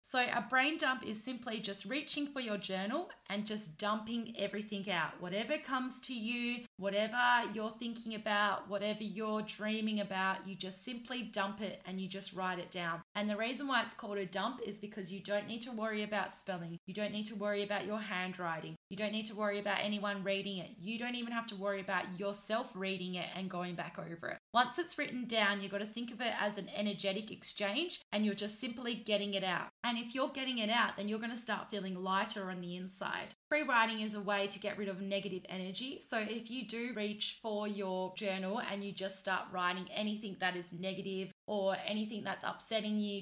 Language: English